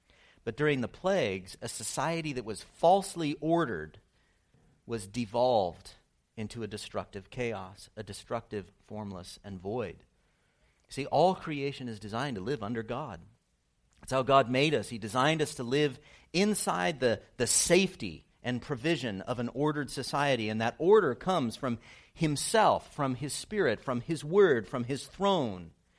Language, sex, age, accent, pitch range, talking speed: English, male, 50-69, American, 110-150 Hz, 150 wpm